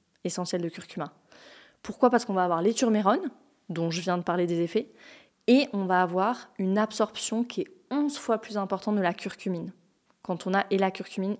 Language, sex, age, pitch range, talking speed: French, female, 20-39, 180-215 Hz, 200 wpm